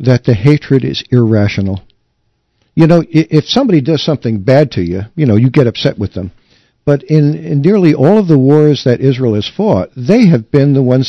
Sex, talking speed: male, 205 wpm